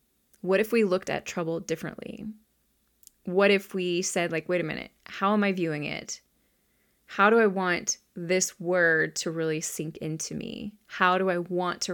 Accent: American